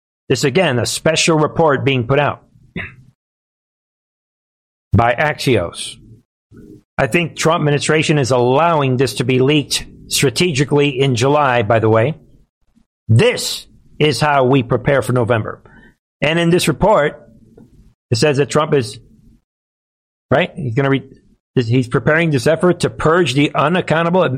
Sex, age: male, 60-79